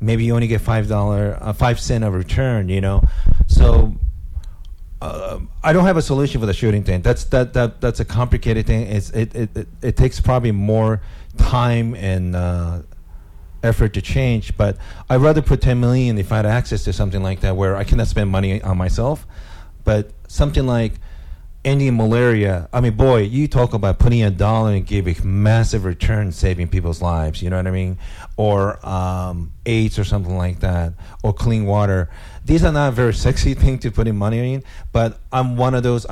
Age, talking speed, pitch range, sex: 40-59, 195 wpm, 95-120 Hz, male